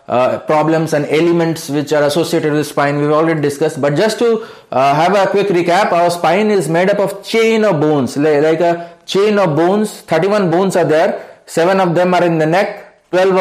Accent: native